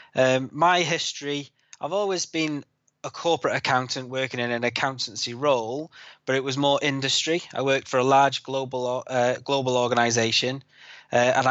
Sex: male